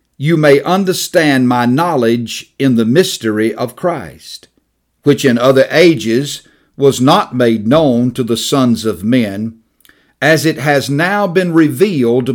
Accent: American